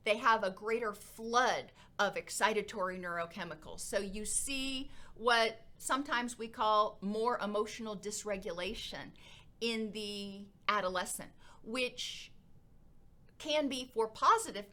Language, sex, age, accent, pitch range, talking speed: English, female, 40-59, American, 200-245 Hz, 105 wpm